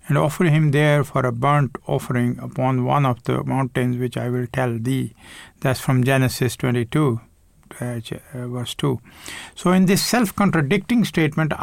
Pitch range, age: 125-155 Hz, 50-69